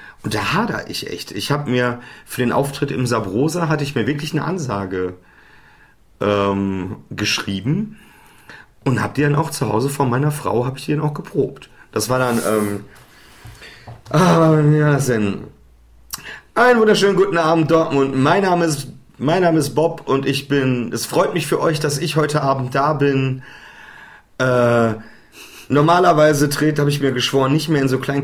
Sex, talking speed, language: male, 170 wpm, German